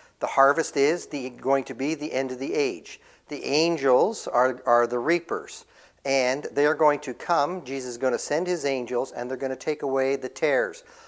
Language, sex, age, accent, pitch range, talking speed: English, male, 50-69, American, 130-165 Hz, 210 wpm